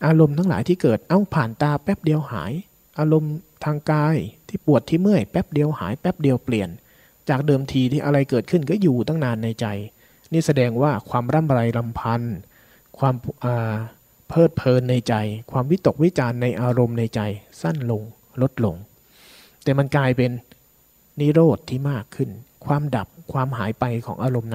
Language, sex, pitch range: Thai, male, 115-150 Hz